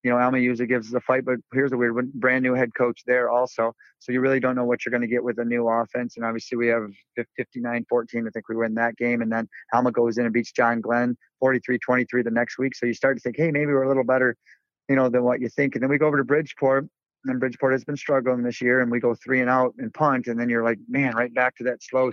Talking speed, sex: 295 wpm, male